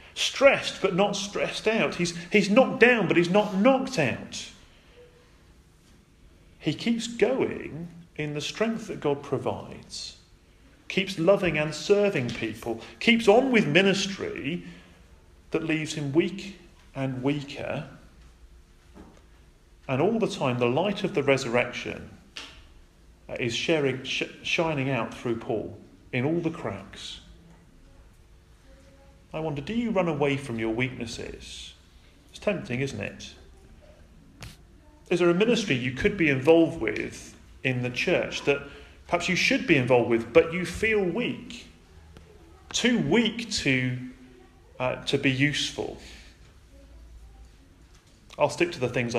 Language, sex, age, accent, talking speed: English, male, 40-59, British, 130 wpm